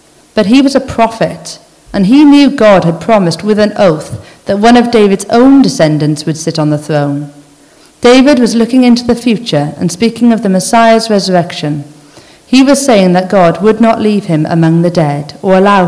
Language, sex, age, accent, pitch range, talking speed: English, female, 50-69, British, 160-230 Hz, 195 wpm